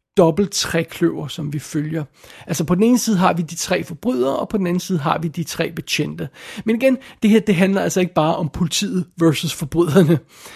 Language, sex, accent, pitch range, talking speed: Danish, male, native, 160-190 Hz, 215 wpm